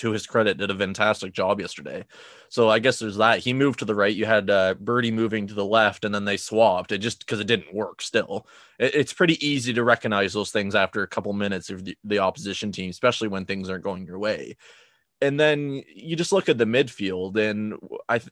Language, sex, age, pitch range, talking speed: English, male, 20-39, 100-125 Hz, 230 wpm